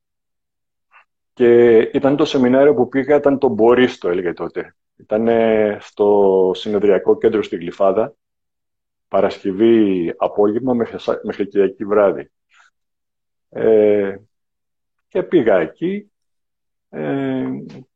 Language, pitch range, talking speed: Greek, 100-125 Hz, 85 wpm